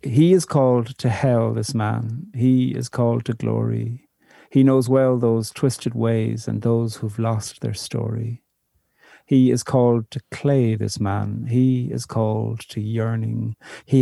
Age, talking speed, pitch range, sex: 50-69, 160 wpm, 110-125 Hz, male